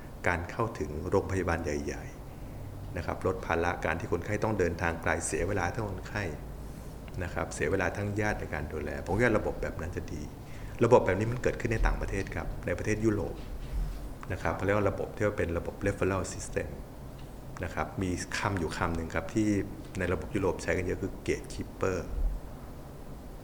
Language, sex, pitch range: Thai, male, 80-105 Hz